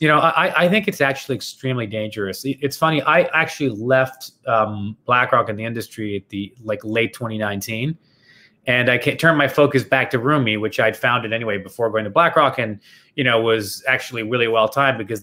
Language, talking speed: English, 190 wpm